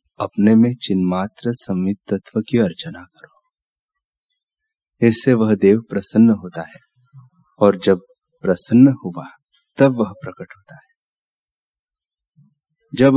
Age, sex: 30-49, male